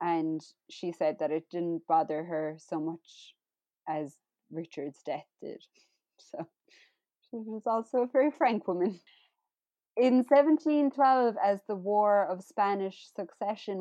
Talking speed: 130 wpm